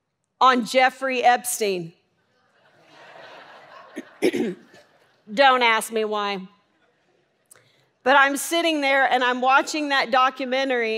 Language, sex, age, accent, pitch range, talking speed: English, female, 40-59, American, 235-395 Hz, 85 wpm